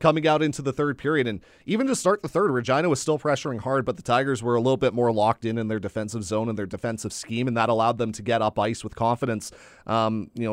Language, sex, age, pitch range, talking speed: English, male, 30-49, 110-130 Hz, 270 wpm